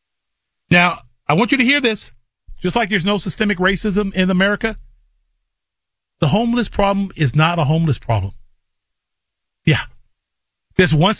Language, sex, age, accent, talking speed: English, male, 40-59, American, 140 wpm